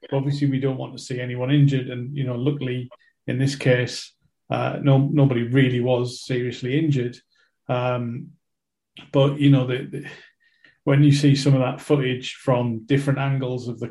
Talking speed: 175 wpm